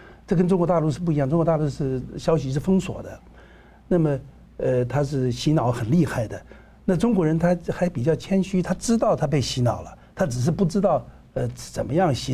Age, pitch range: 60-79, 120-155 Hz